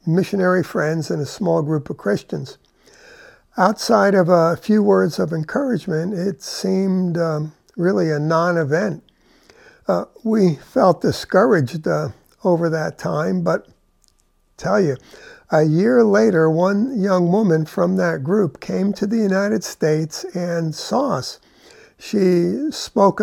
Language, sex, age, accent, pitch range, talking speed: English, male, 60-79, American, 160-210 Hz, 135 wpm